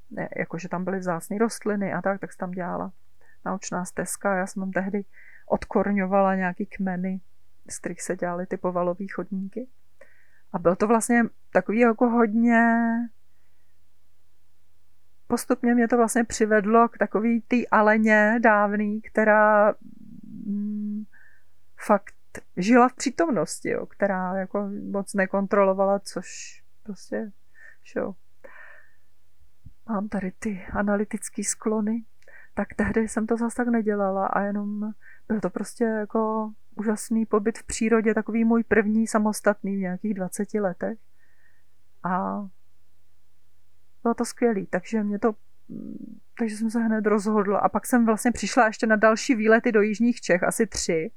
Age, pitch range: 40-59, 190-225 Hz